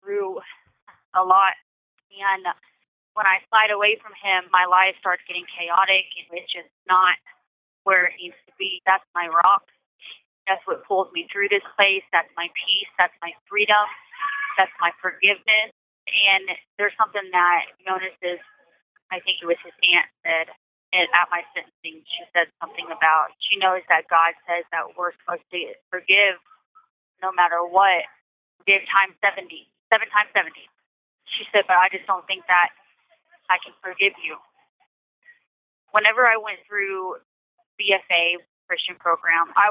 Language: English